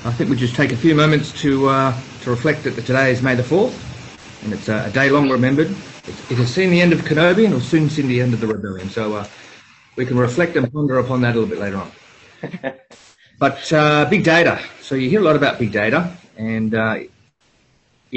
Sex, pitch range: male, 105-140 Hz